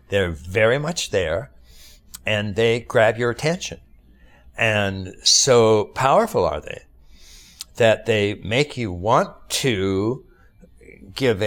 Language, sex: English, male